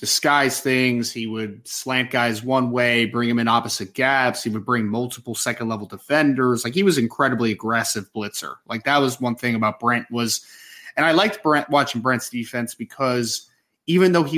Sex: male